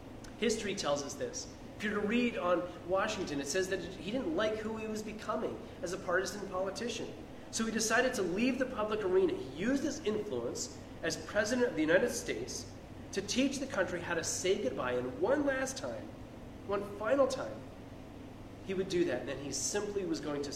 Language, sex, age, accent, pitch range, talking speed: English, male, 30-49, American, 130-215 Hz, 200 wpm